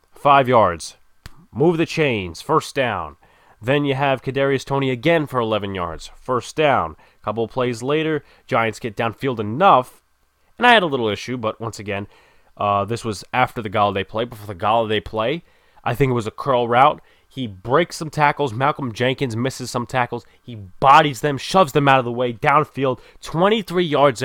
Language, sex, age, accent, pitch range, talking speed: English, male, 20-39, American, 110-145 Hz, 180 wpm